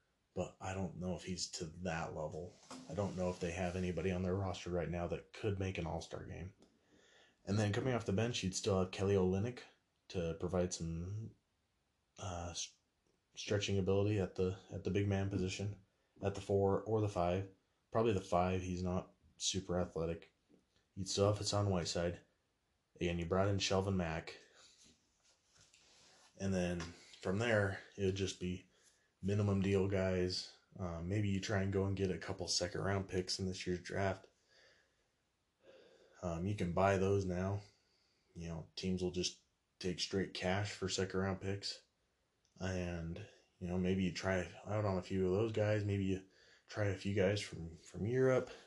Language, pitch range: English, 90-100 Hz